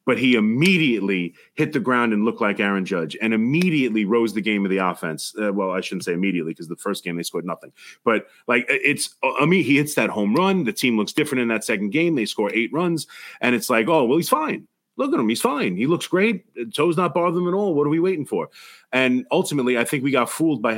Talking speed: 255 wpm